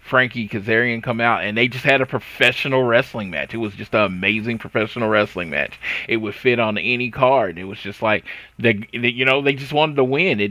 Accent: American